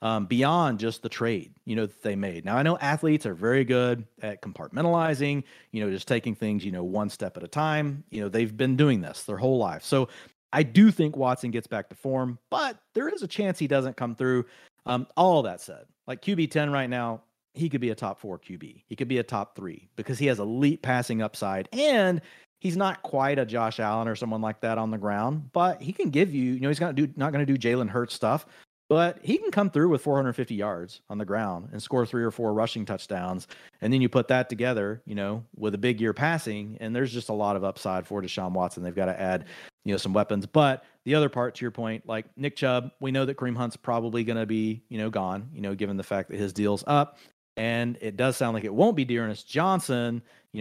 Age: 40-59